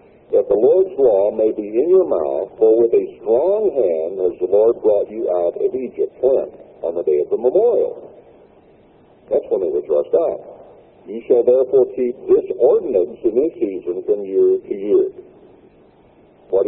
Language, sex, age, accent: English, male, 60-79, American